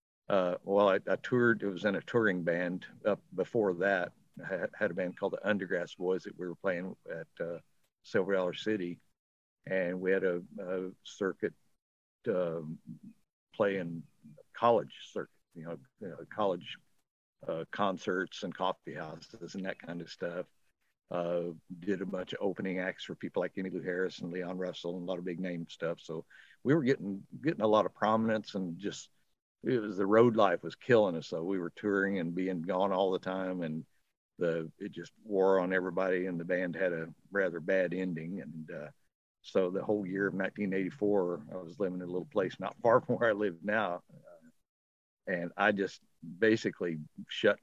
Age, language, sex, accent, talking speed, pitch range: 60-79, English, male, American, 190 wpm, 90-100 Hz